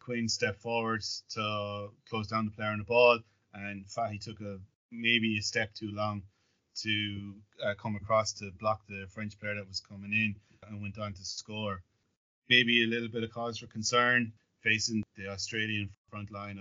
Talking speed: 185 wpm